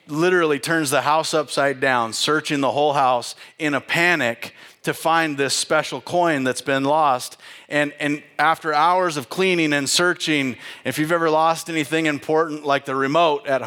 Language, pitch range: English, 145-175 Hz